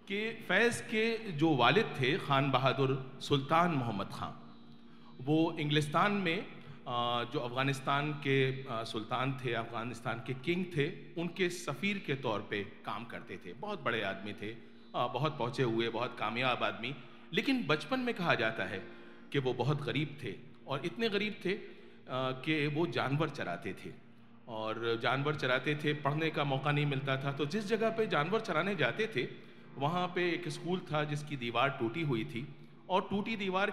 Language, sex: Hindi, male